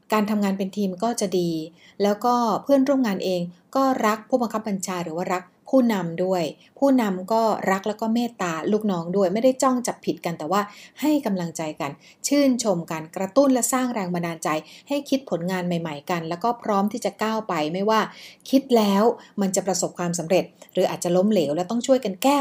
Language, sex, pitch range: Thai, female, 180-235 Hz